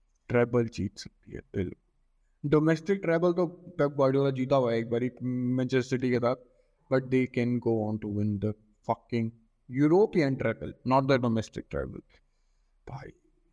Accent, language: native, Hindi